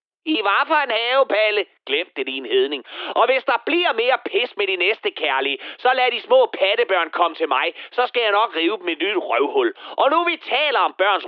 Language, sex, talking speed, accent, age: Danish, male, 220 wpm, native, 30-49